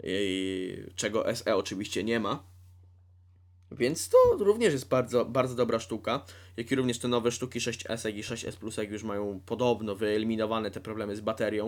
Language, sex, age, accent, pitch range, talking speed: Polish, male, 20-39, native, 95-135 Hz, 160 wpm